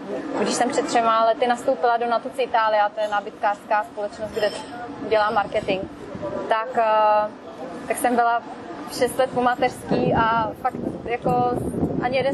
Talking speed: 140 wpm